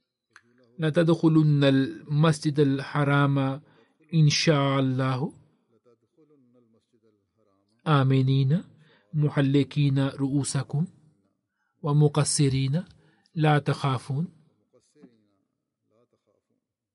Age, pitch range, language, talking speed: 40-59, 135-155 Hz, Swahili, 35 wpm